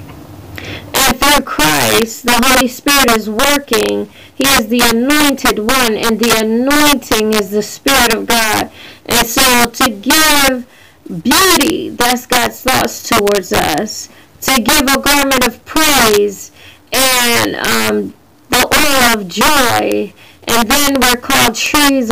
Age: 30-49